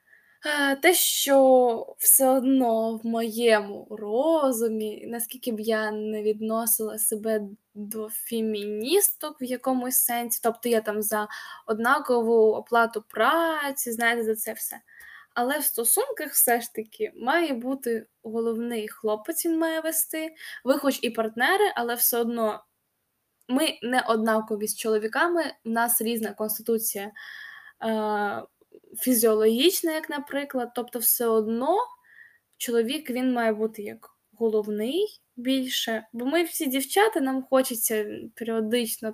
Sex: female